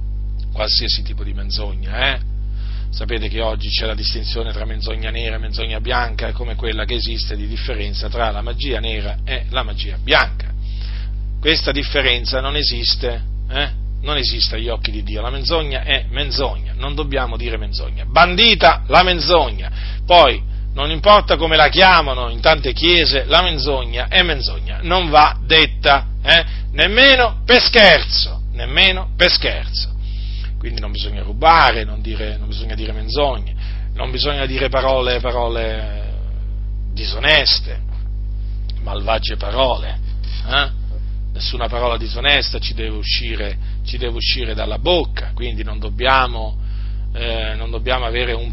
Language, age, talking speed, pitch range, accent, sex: Italian, 40-59, 135 wpm, 100-125 Hz, native, male